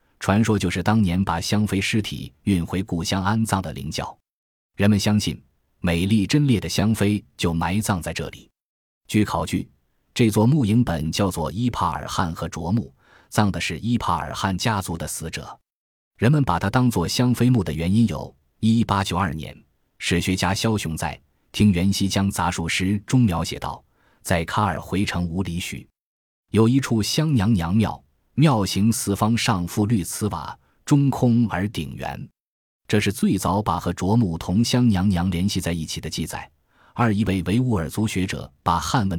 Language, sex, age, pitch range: Chinese, male, 20-39, 85-110 Hz